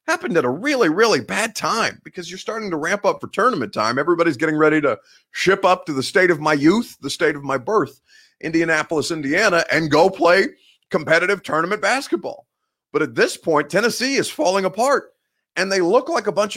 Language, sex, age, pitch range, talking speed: English, male, 30-49, 135-205 Hz, 200 wpm